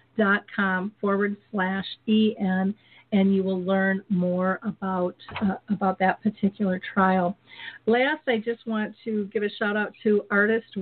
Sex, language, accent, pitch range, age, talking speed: female, English, American, 195-220 Hz, 50-69, 155 wpm